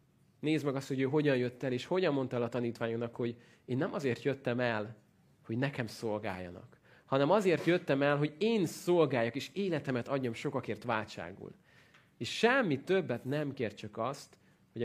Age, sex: 30-49, male